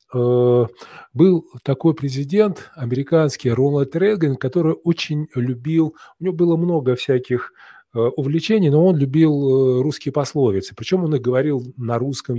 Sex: male